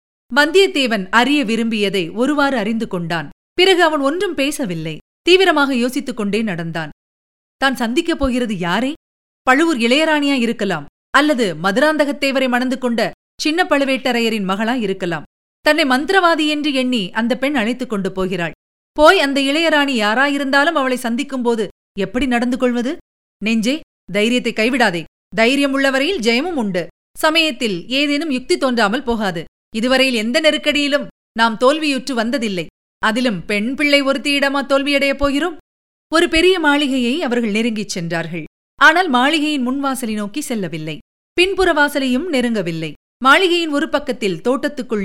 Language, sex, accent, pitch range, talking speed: Tamil, female, native, 210-285 Hz, 115 wpm